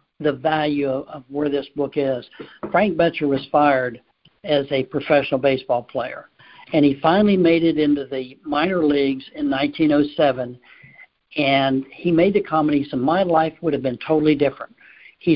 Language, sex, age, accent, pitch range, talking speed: English, male, 60-79, American, 145-175 Hz, 165 wpm